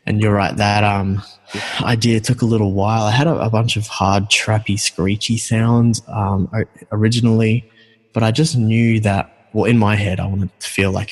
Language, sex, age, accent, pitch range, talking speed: English, male, 20-39, Australian, 95-110 Hz, 195 wpm